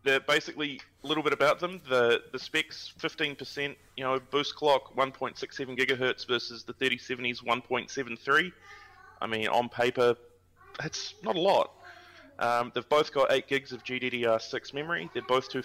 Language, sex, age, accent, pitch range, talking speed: English, male, 20-39, Australian, 110-135 Hz, 190 wpm